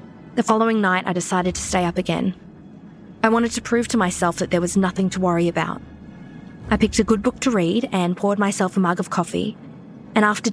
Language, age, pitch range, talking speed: English, 20-39, 175-205 Hz, 215 wpm